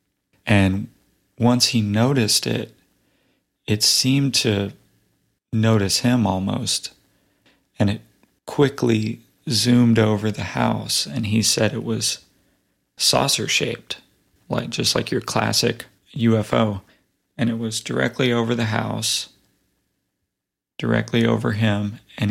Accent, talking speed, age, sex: American, 115 wpm, 40-59, male